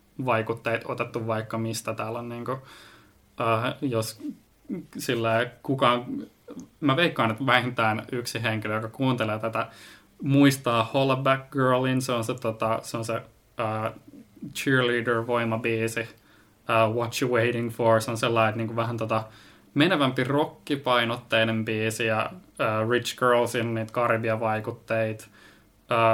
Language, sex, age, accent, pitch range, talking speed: Finnish, male, 20-39, native, 110-130 Hz, 125 wpm